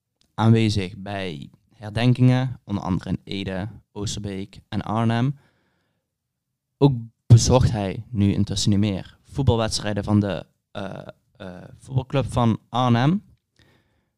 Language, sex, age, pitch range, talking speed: Dutch, male, 20-39, 100-130 Hz, 105 wpm